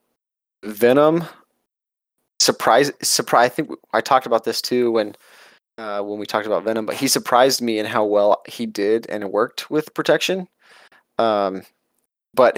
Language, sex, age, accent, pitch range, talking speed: English, male, 20-39, American, 105-125 Hz, 155 wpm